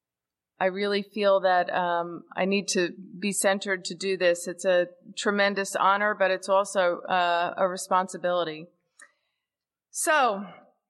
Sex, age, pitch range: female, 40-59, 195-245 Hz